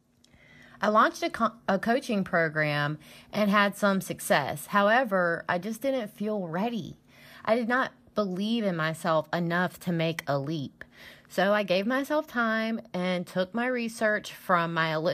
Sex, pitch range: female, 165-220 Hz